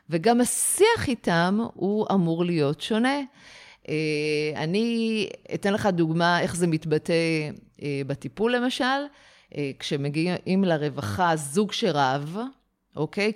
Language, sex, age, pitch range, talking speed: Hebrew, female, 30-49, 150-215 Hz, 95 wpm